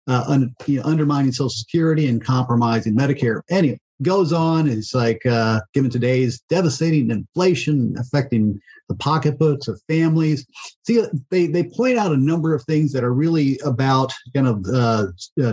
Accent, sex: American, male